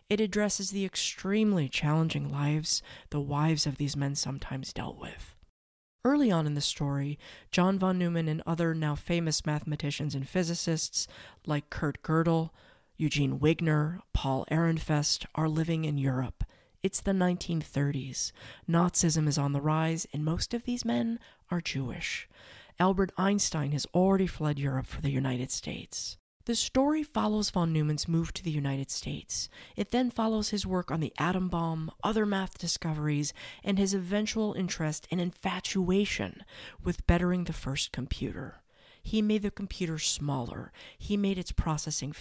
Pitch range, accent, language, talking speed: 150-195 Hz, American, English, 150 wpm